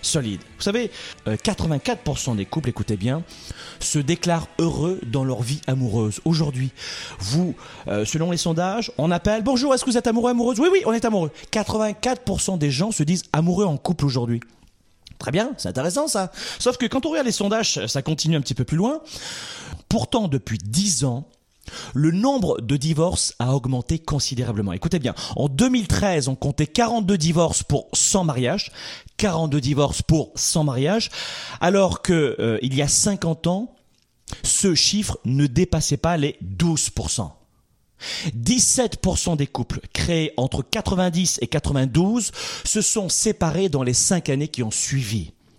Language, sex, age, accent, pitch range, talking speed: French, male, 30-49, French, 130-205 Hz, 160 wpm